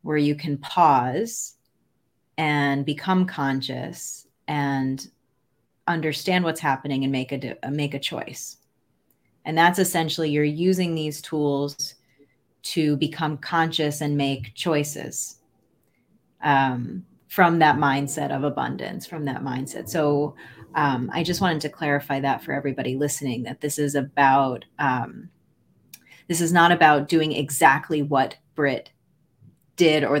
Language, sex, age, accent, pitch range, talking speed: English, female, 30-49, American, 135-160 Hz, 130 wpm